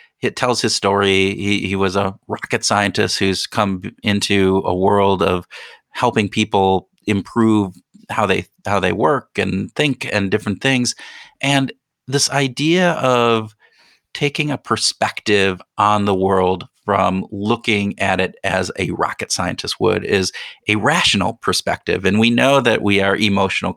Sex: male